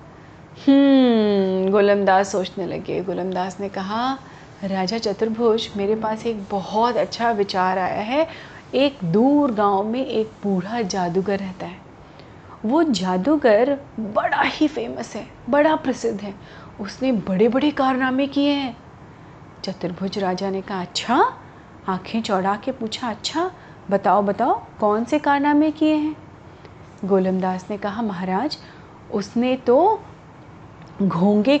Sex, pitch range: female, 195-270 Hz